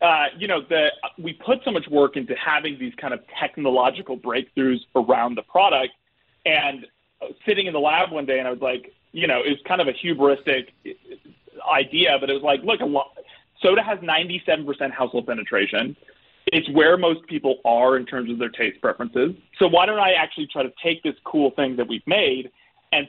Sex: male